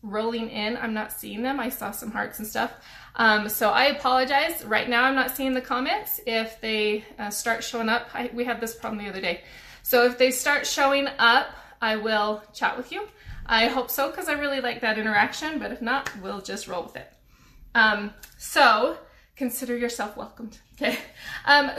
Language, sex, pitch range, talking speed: English, female, 220-275 Hz, 195 wpm